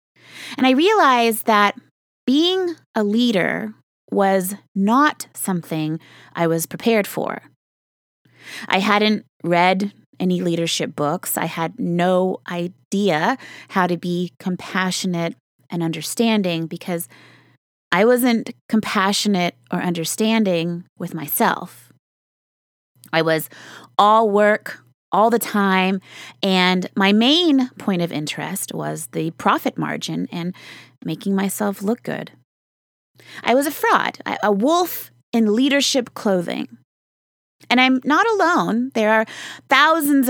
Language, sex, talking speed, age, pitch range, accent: English, female, 115 wpm, 20-39, 175-230 Hz, American